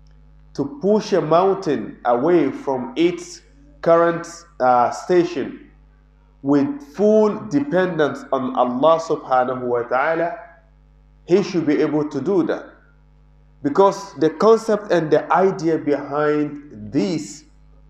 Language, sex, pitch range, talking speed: English, male, 140-170 Hz, 110 wpm